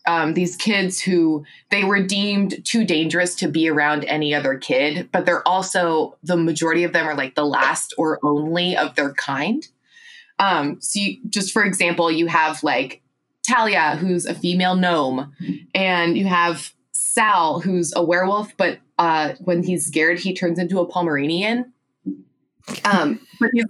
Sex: female